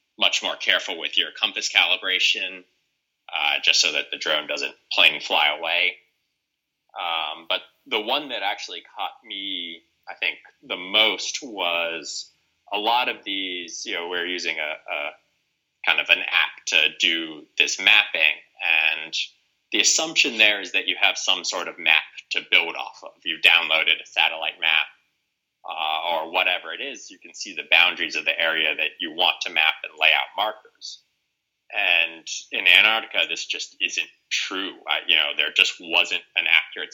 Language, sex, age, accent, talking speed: English, male, 30-49, American, 165 wpm